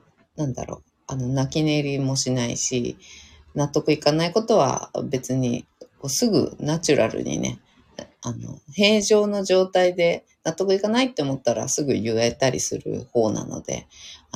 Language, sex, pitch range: Japanese, female, 125-195 Hz